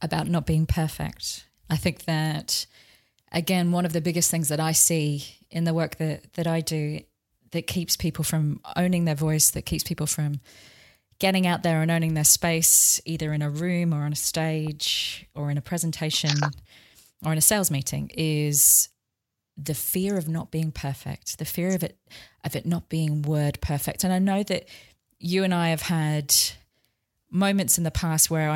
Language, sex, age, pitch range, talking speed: English, female, 20-39, 145-170 Hz, 185 wpm